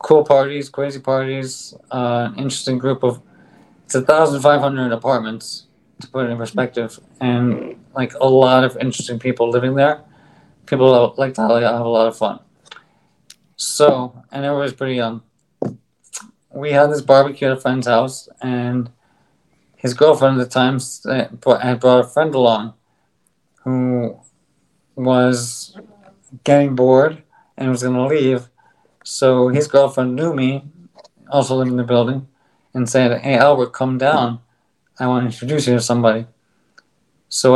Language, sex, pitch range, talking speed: English, male, 120-135 Hz, 145 wpm